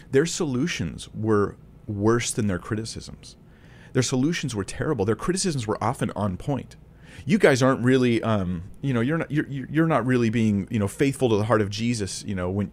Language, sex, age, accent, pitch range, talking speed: English, male, 30-49, American, 90-120 Hz, 200 wpm